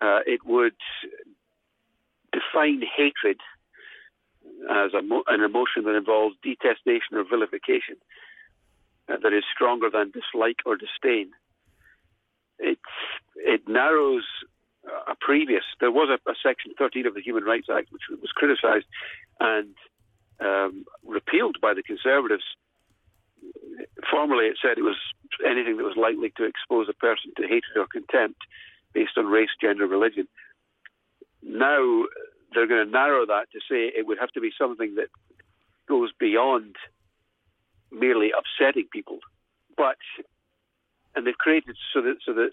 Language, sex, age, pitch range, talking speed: English, male, 50-69, 330-405 Hz, 135 wpm